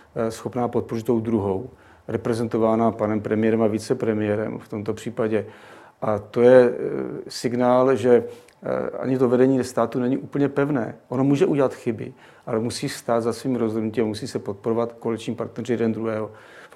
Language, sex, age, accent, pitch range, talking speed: Czech, male, 40-59, native, 110-120 Hz, 155 wpm